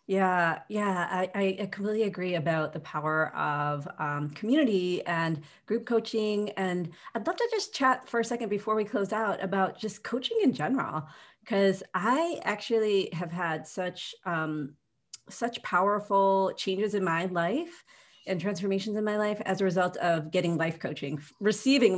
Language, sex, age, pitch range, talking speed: English, female, 30-49, 180-235 Hz, 160 wpm